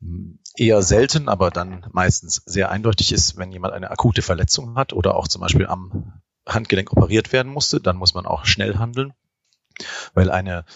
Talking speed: 175 wpm